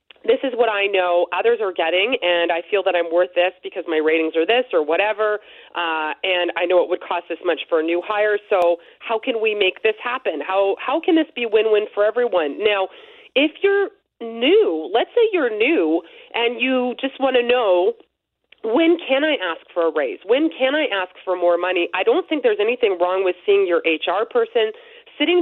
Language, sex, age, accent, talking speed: English, female, 30-49, American, 215 wpm